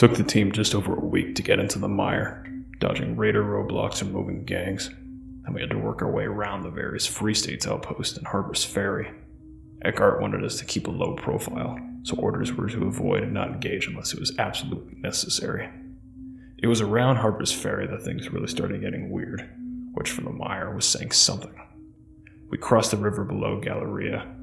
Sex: male